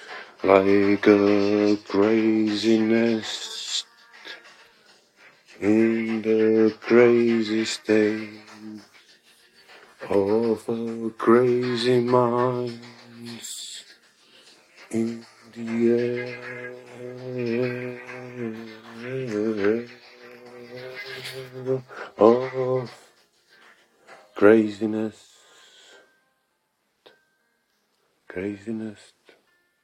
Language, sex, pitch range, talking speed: Czech, male, 105-120 Hz, 35 wpm